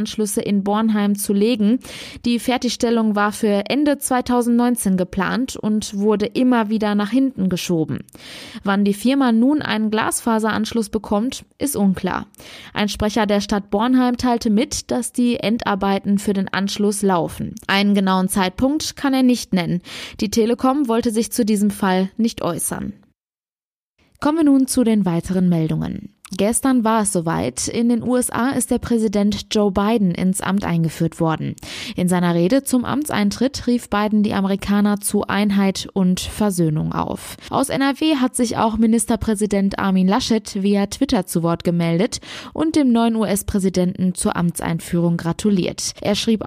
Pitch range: 190-240 Hz